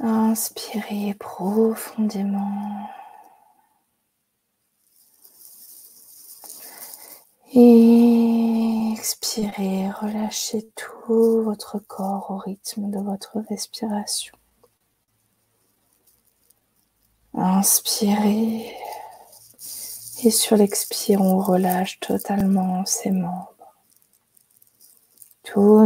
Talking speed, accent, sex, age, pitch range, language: 55 wpm, French, female, 20-39, 190-225 Hz, French